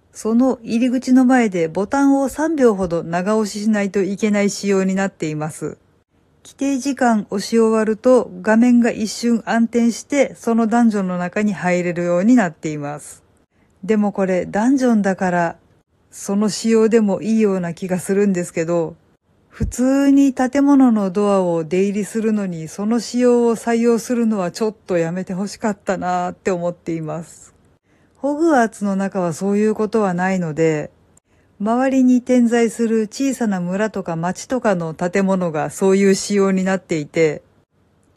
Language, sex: Japanese, female